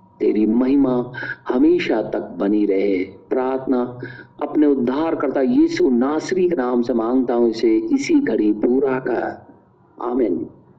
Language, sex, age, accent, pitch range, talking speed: Hindi, male, 50-69, native, 115-125 Hz, 130 wpm